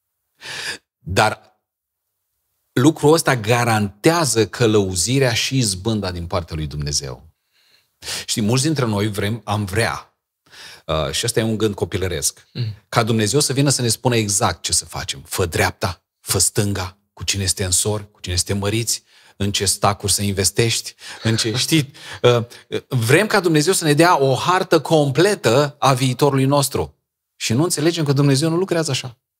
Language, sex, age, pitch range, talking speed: Romanian, male, 40-59, 90-125 Hz, 155 wpm